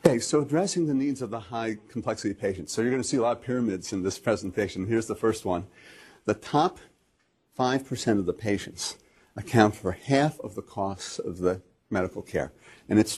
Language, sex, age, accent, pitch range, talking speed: English, male, 50-69, American, 100-130 Hz, 195 wpm